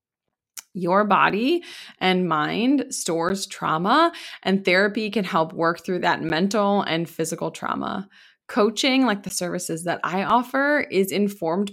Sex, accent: female, American